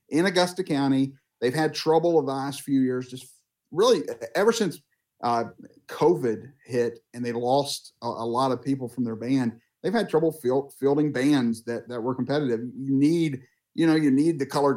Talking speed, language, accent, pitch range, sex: 185 wpm, English, American, 125-150 Hz, male